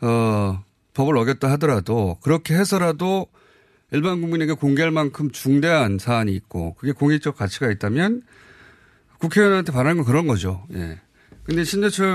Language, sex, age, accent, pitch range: Korean, male, 30-49, native, 115-160 Hz